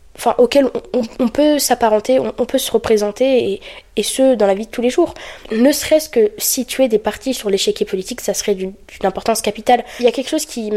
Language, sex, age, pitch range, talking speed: French, female, 20-39, 195-245 Hz, 240 wpm